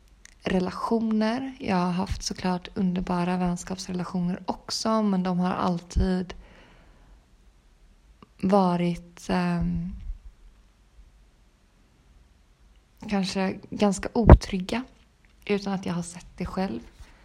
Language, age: Swedish, 20-39